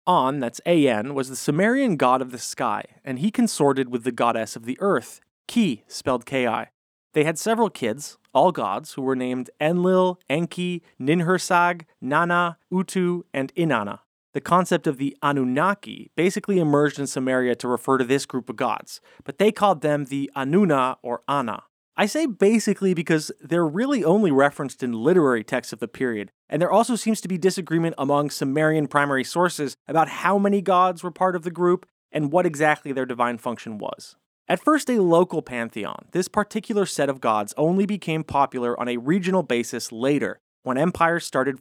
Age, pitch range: 30-49, 130-180 Hz